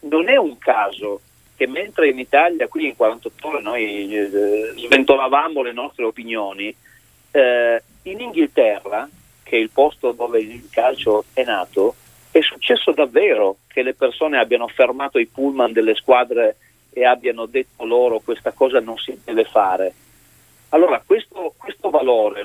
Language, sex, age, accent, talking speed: Italian, male, 40-59, native, 150 wpm